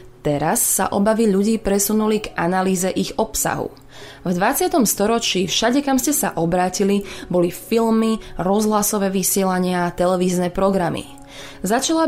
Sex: female